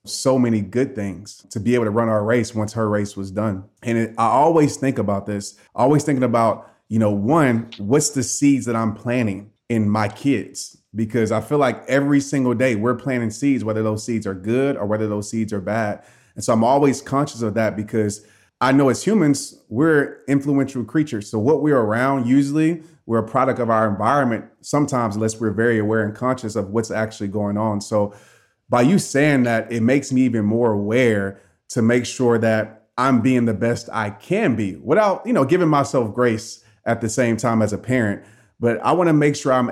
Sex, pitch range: male, 110-135 Hz